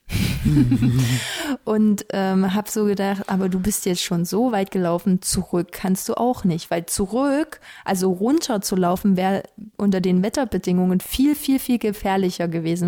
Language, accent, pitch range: German, German, 190-230 Hz